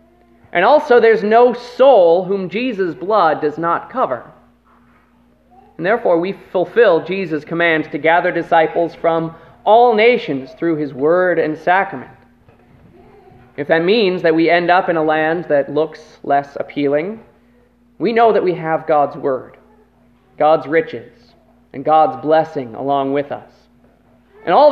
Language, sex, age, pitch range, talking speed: English, male, 30-49, 150-205 Hz, 145 wpm